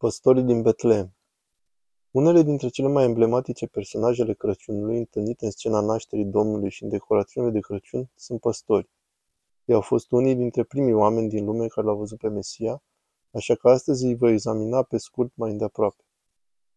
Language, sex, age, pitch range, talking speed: Romanian, male, 20-39, 110-125 Hz, 165 wpm